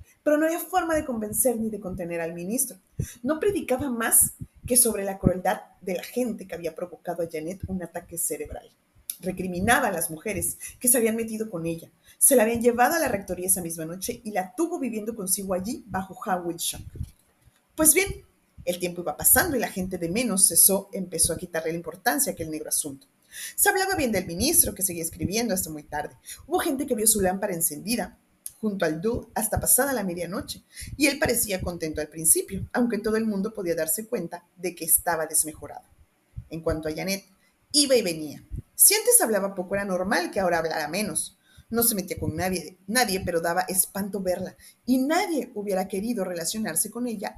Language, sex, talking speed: Spanish, female, 195 wpm